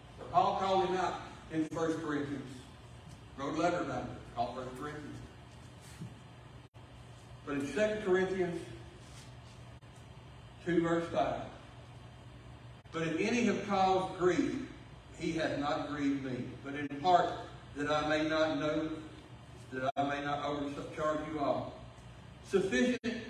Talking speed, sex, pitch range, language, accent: 125 wpm, male, 125-165 Hz, English, American